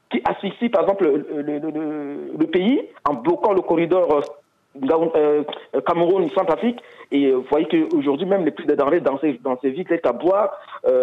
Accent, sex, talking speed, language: French, male, 170 wpm, French